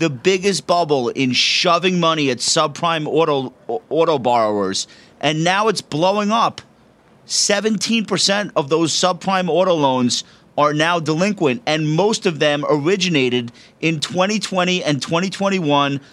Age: 40-59